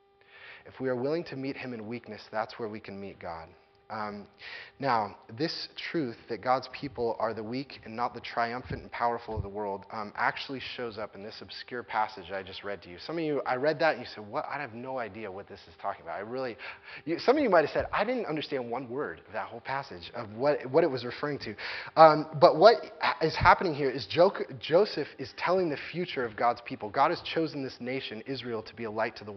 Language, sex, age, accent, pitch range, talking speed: English, male, 20-39, American, 120-185 Hz, 240 wpm